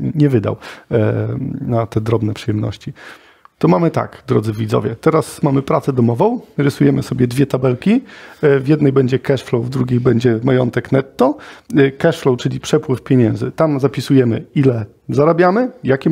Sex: male